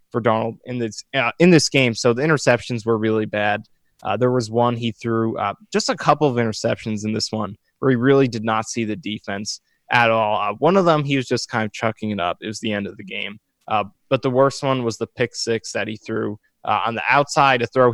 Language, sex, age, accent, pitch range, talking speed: English, male, 20-39, American, 110-130 Hz, 255 wpm